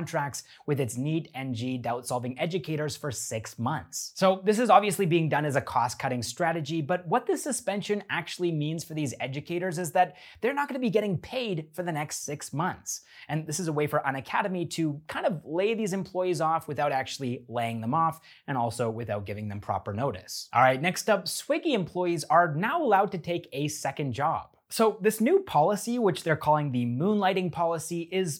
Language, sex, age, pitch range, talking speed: English, male, 30-49, 135-185 Hz, 195 wpm